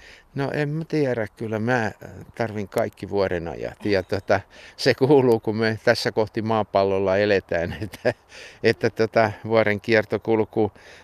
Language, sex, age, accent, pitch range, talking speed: Finnish, male, 60-79, native, 105-120 Hz, 130 wpm